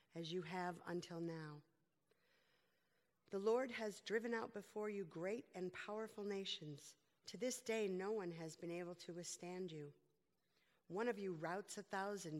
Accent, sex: American, female